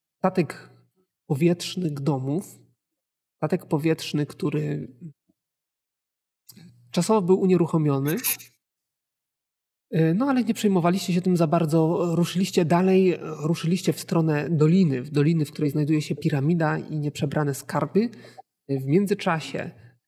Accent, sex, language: native, male, Polish